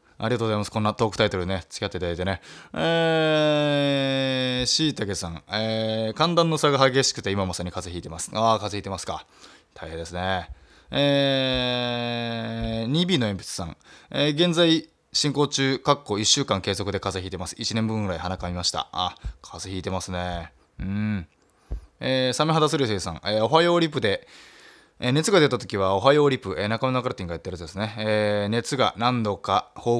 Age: 20-39